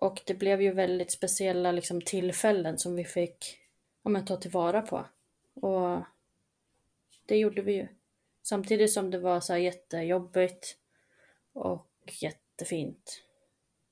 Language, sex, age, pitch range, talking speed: Swedish, female, 30-49, 175-195 Hz, 130 wpm